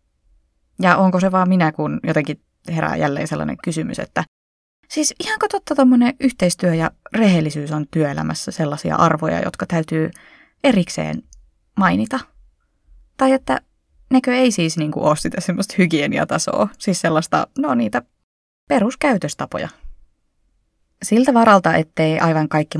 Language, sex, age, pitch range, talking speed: Finnish, female, 20-39, 145-200 Hz, 125 wpm